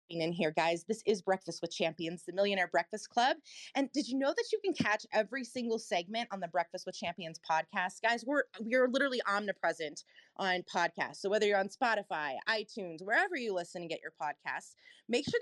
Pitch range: 180-265 Hz